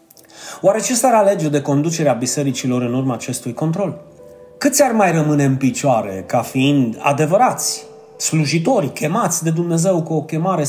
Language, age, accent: Romanian, 30-49, native